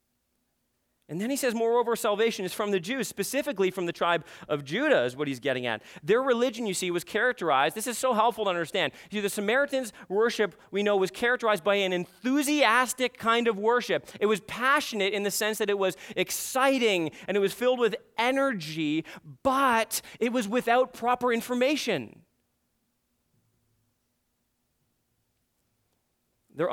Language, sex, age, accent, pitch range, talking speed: English, male, 30-49, American, 165-220 Hz, 155 wpm